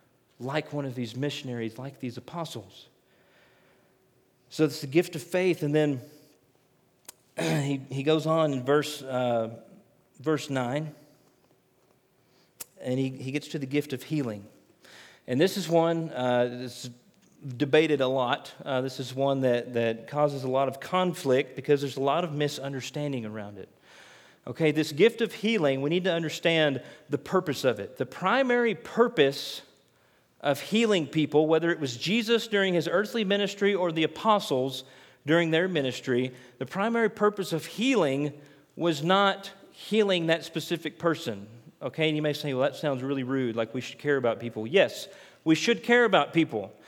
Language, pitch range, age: English, 135-175 Hz, 40-59